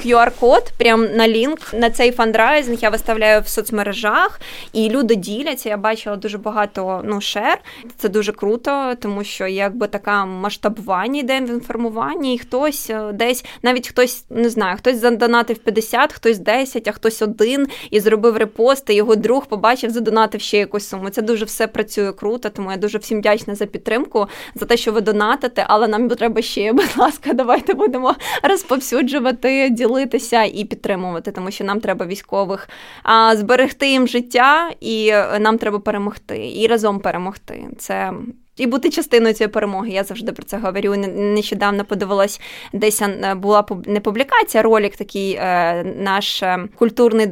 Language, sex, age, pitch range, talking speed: Ukrainian, female, 20-39, 205-240 Hz, 160 wpm